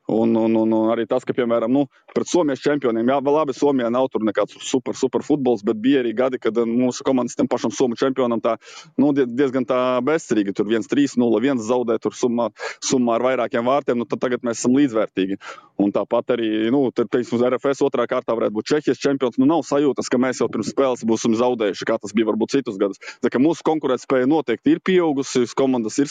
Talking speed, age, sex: 200 wpm, 20-39, male